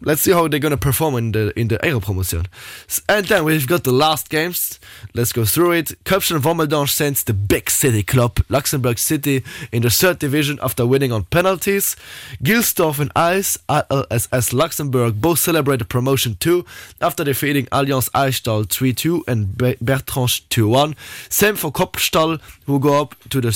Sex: male